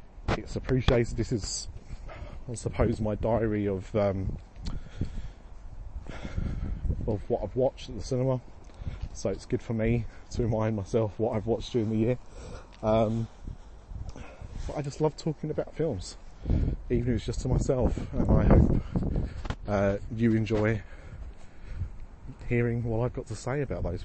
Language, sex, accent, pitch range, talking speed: English, male, British, 90-120 Hz, 145 wpm